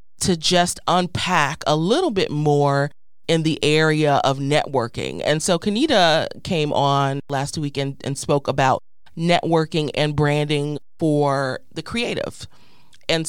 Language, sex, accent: English, female, American